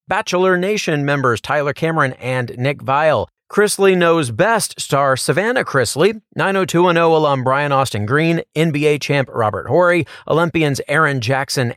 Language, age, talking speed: English, 40-59, 135 wpm